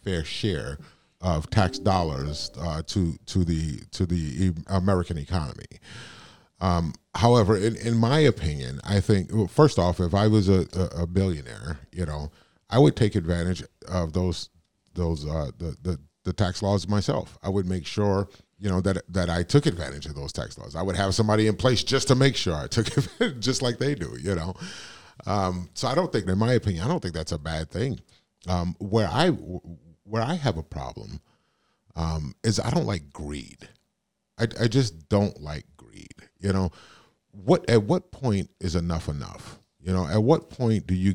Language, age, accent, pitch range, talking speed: English, 30-49, American, 85-110 Hz, 190 wpm